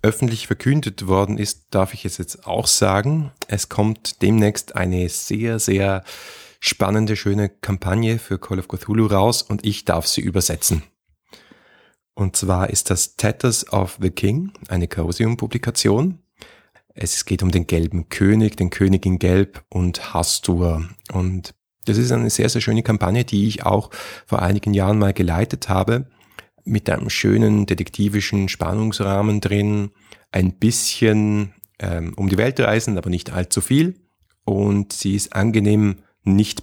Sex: male